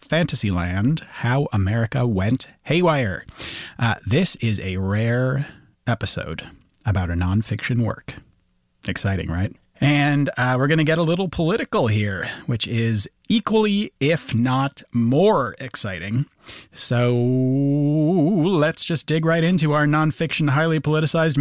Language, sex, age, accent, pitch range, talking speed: English, male, 30-49, American, 105-150 Hz, 120 wpm